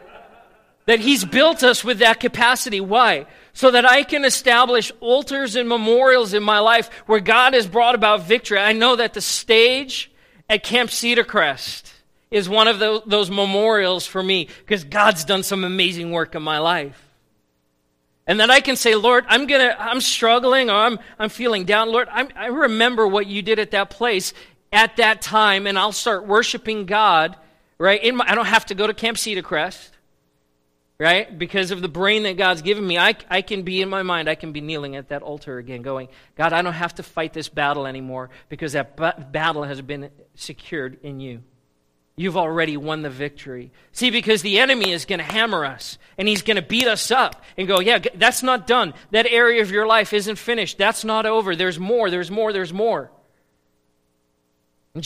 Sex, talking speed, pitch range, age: male, 200 wpm, 160-230 Hz, 40-59